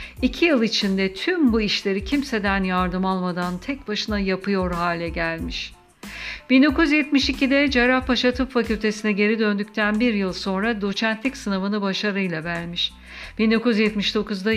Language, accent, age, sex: Turkish, native, 60-79, female